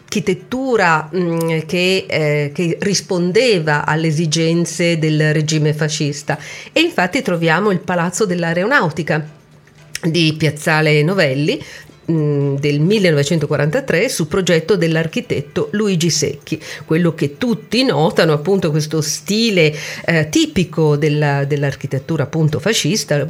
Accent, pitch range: native, 155-195 Hz